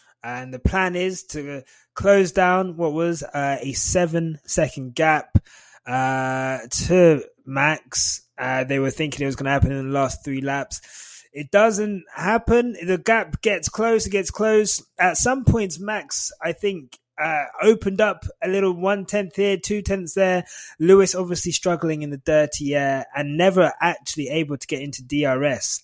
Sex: male